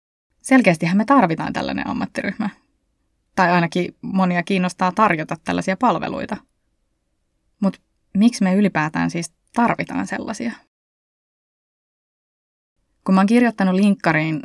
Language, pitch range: Finnish, 165-205 Hz